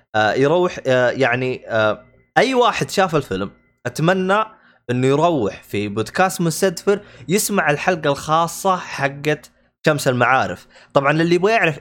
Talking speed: 110 wpm